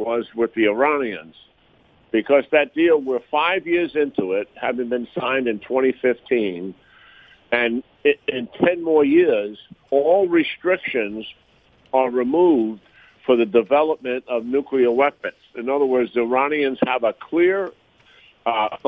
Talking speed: 130 wpm